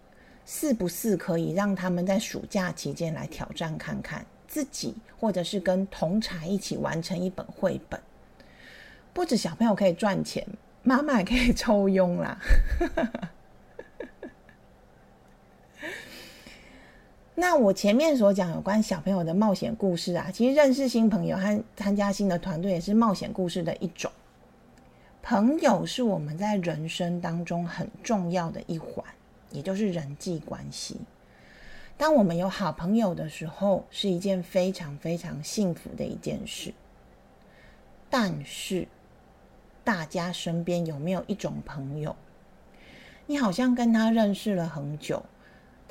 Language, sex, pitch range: Chinese, female, 170-215 Hz